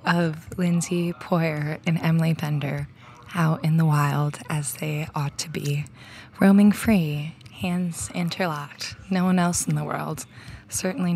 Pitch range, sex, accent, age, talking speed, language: 160-195 Hz, female, American, 20-39, 140 wpm, English